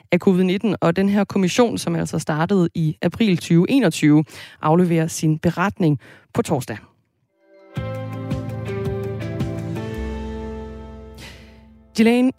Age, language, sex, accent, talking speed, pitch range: 20-39, Danish, female, native, 85 wpm, 155-195 Hz